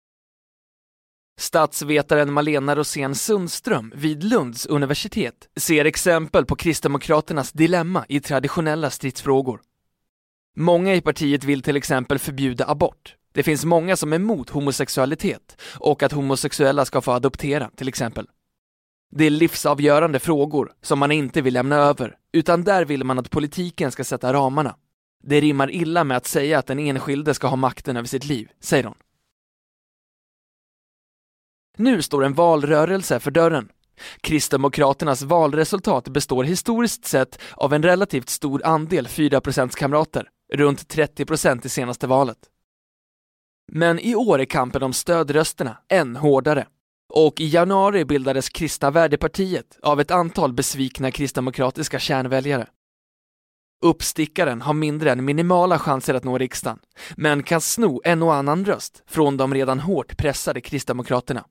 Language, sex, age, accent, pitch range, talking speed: Swedish, male, 20-39, native, 135-160 Hz, 135 wpm